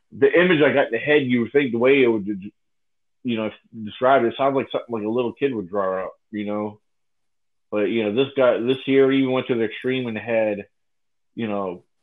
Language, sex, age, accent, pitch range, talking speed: English, male, 30-49, American, 105-130 Hz, 235 wpm